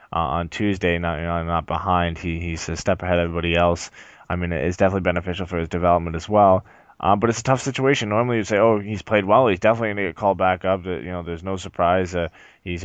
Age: 20-39